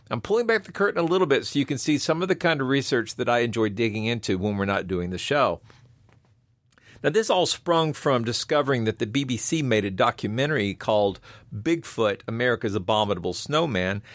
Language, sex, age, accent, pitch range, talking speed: English, male, 50-69, American, 110-150 Hz, 195 wpm